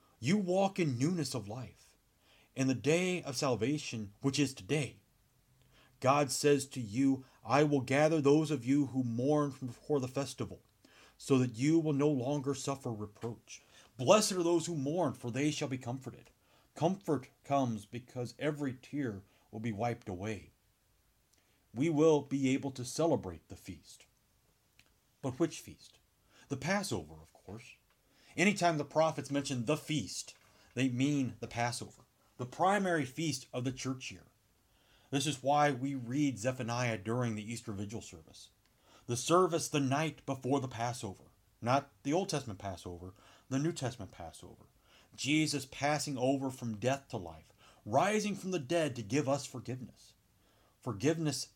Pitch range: 115-145 Hz